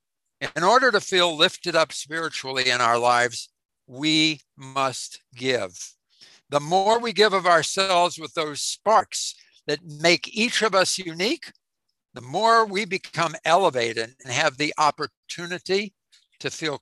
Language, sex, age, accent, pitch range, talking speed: English, male, 60-79, American, 150-190 Hz, 140 wpm